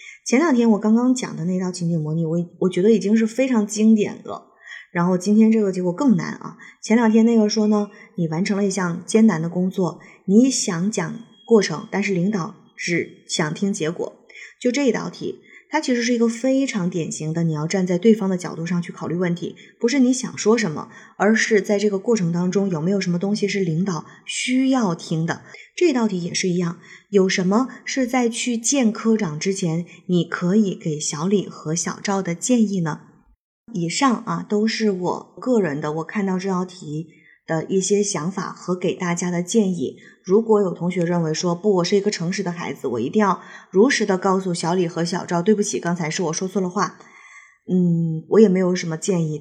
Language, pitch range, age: Chinese, 175-220 Hz, 20-39